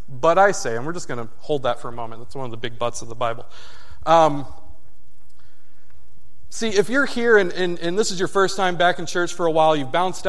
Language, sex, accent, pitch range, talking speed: English, male, American, 125-185 Hz, 250 wpm